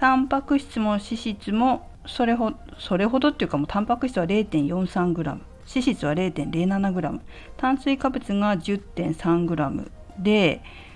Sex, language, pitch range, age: female, Japanese, 155-235 Hz, 50-69